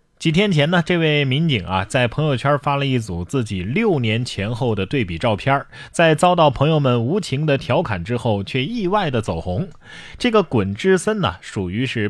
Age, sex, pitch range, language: 20-39, male, 105-165 Hz, Chinese